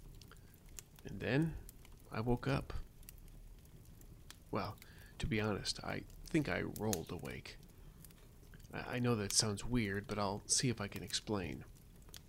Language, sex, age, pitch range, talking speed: English, male, 40-59, 100-125 Hz, 125 wpm